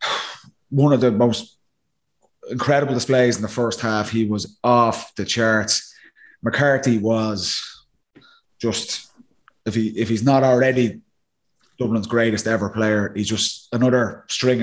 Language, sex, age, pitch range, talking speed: English, male, 20-39, 110-150 Hz, 130 wpm